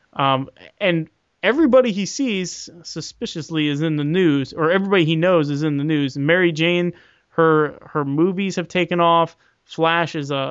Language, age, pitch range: English, 20-39, 145-175 Hz